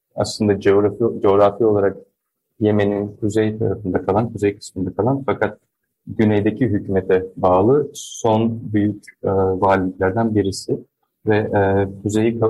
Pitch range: 100-115 Hz